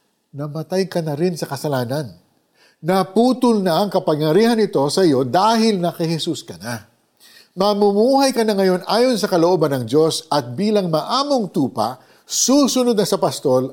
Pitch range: 125-185 Hz